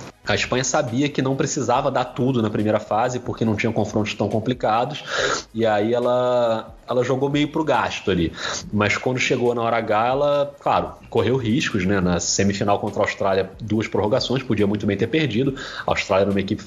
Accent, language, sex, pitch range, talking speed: Brazilian, Portuguese, male, 110-150 Hz, 200 wpm